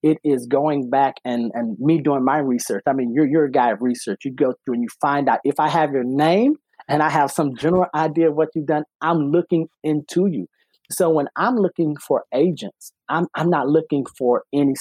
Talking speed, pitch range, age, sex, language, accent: 225 wpm, 130-160 Hz, 30-49, male, English, American